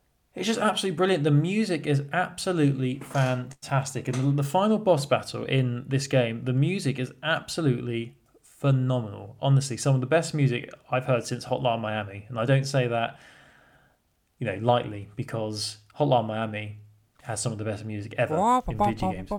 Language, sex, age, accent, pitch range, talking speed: English, male, 10-29, British, 120-155 Hz, 165 wpm